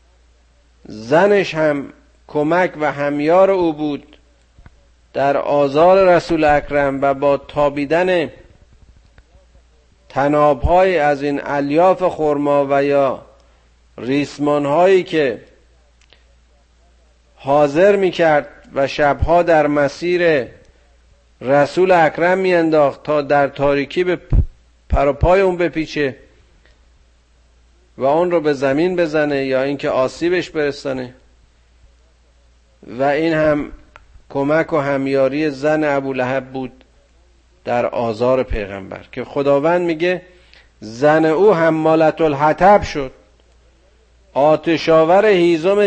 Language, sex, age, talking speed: Persian, male, 50-69, 95 wpm